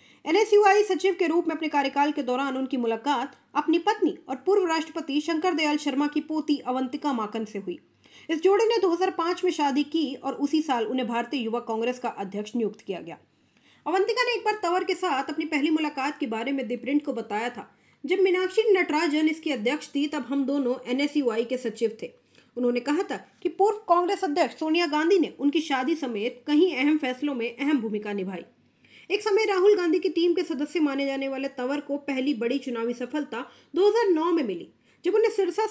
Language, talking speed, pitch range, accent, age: English, 130 wpm, 255-350 Hz, Indian, 30-49